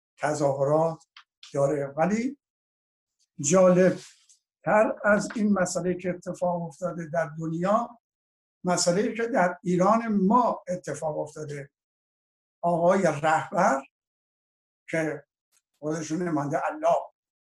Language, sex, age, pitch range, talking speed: Persian, male, 60-79, 160-205 Hz, 90 wpm